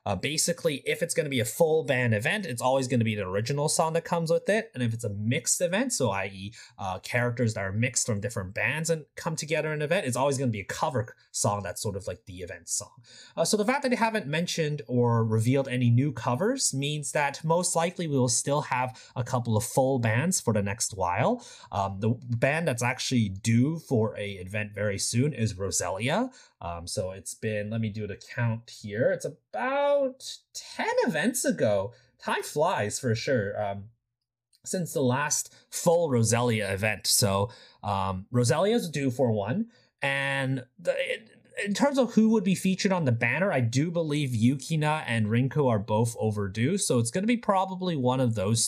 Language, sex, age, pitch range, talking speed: English, male, 30-49, 115-180 Hz, 205 wpm